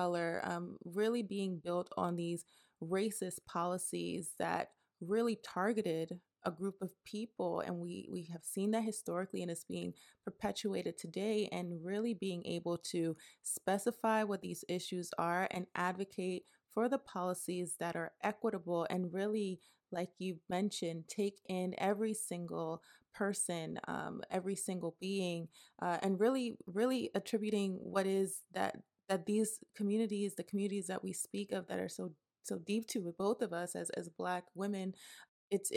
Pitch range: 175-210 Hz